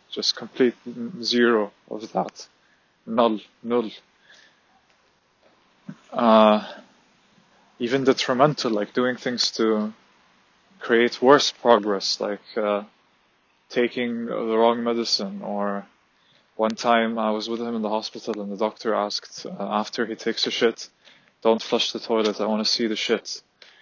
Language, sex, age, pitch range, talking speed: English, male, 20-39, 110-120 Hz, 130 wpm